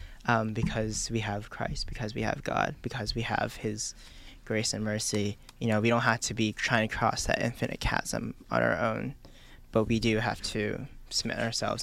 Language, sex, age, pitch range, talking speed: English, male, 20-39, 105-120 Hz, 200 wpm